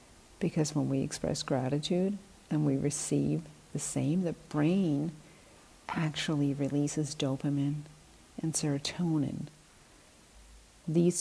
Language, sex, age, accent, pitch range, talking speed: English, female, 50-69, American, 135-160 Hz, 95 wpm